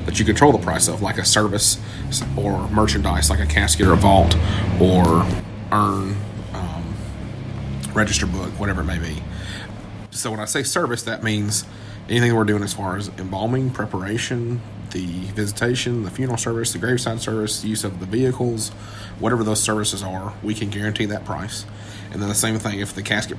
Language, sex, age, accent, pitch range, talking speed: English, male, 30-49, American, 100-110 Hz, 185 wpm